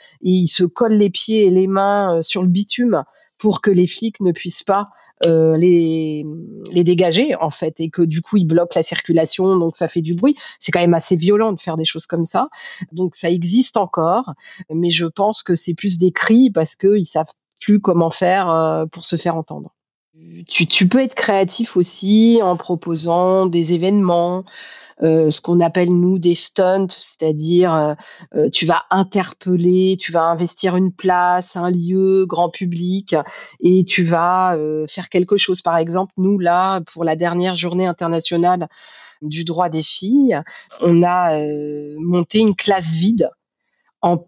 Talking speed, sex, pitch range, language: 180 wpm, female, 170-195 Hz, French